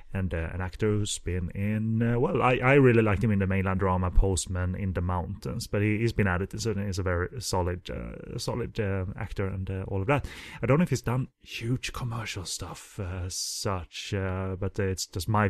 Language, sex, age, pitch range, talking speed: English, male, 30-49, 95-120 Hz, 225 wpm